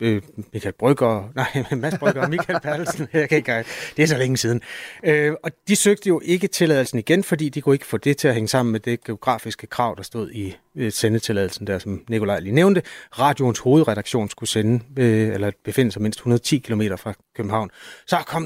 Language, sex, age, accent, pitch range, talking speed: Danish, male, 30-49, native, 110-160 Hz, 200 wpm